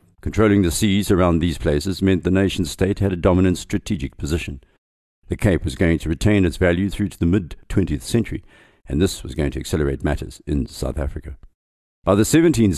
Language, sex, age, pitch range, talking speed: English, male, 60-79, 75-100 Hz, 190 wpm